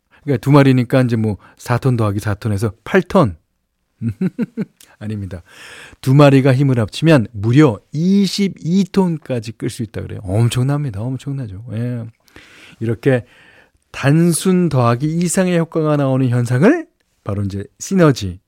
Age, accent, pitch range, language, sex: 40-59, native, 105-150 Hz, Korean, male